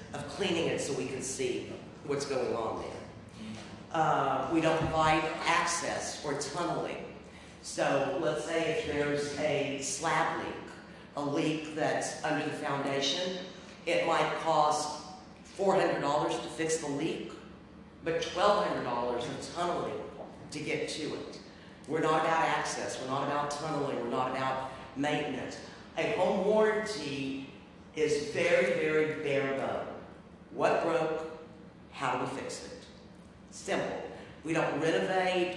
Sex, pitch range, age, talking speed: female, 140-165 Hz, 50-69, 135 wpm